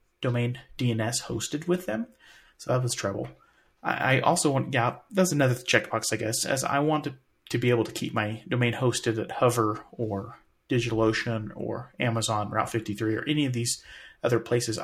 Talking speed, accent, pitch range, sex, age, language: 180 wpm, American, 110-155 Hz, male, 30-49, English